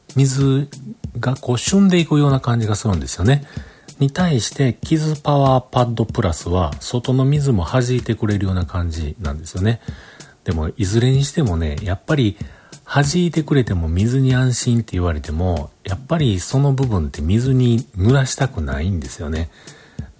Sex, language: male, Japanese